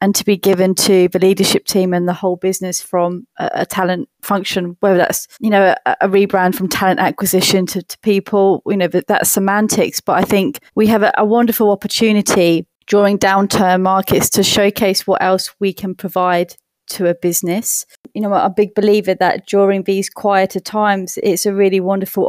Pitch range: 185-210 Hz